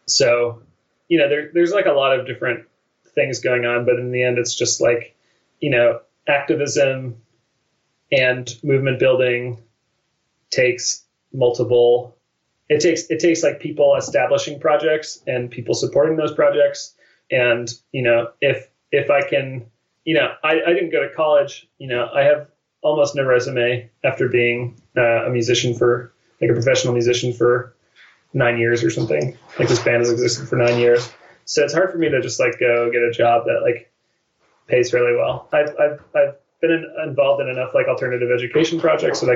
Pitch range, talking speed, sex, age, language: 120-150 Hz, 175 wpm, male, 30-49, English